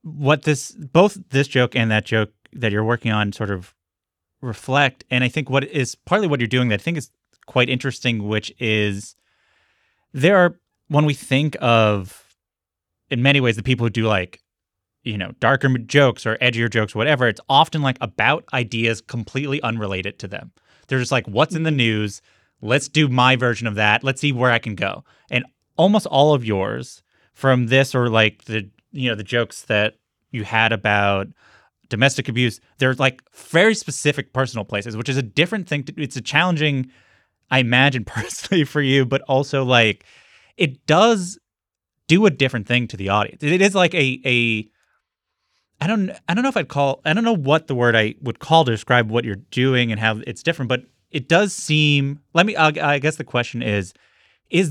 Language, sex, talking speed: English, male, 195 wpm